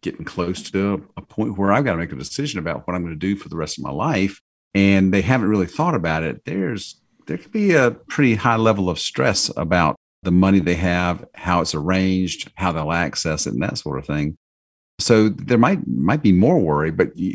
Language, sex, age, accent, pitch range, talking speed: English, male, 50-69, American, 80-105 Hz, 230 wpm